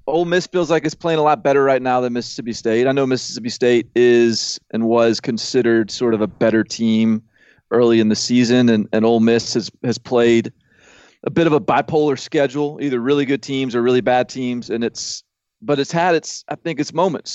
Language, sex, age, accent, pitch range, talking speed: English, male, 30-49, American, 115-140 Hz, 210 wpm